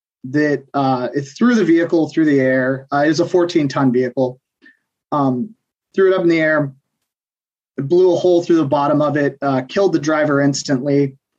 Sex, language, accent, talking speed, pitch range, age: male, English, American, 190 wpm, 135-155 Hz, 30-49